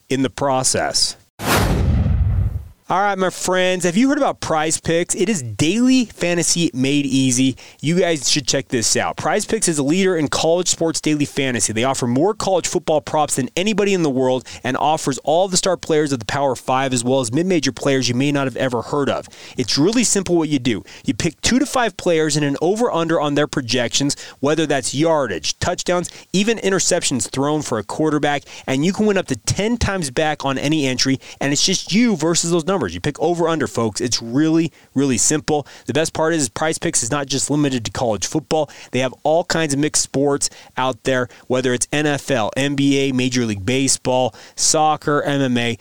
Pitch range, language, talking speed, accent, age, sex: 125-165 Hz, English, 205 wpm, American, 30-49, male